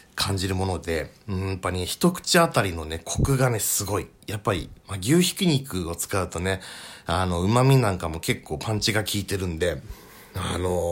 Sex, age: male, 40-59